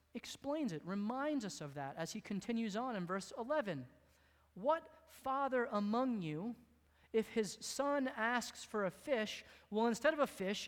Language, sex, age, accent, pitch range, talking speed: English, male, 30-49, American, 180-265 Hz, 165 wpm